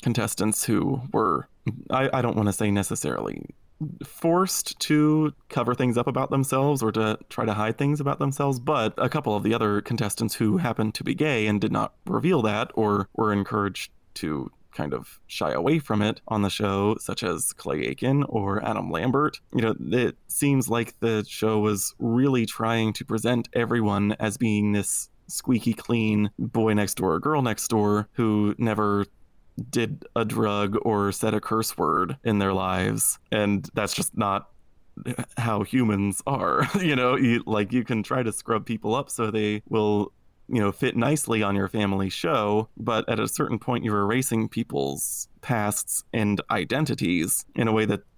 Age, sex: 20-39, male